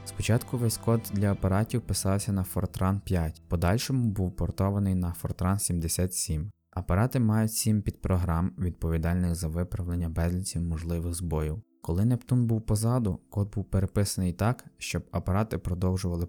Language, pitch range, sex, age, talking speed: Ukrainian, 85-100 Hz, male, 20-39, 125 wpm